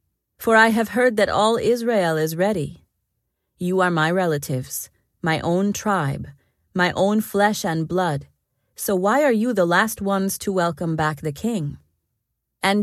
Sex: female